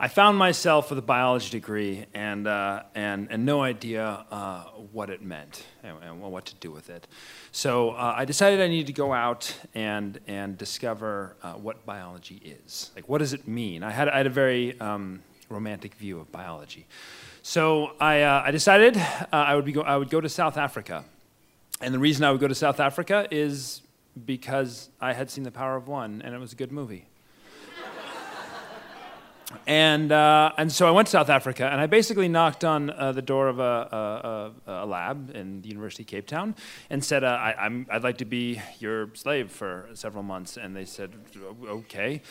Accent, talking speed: American, 205 wpm